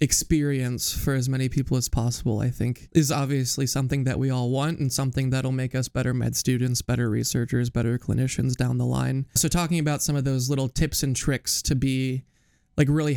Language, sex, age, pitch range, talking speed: English, male, 20-39, 125-145 Hz, 205 wpm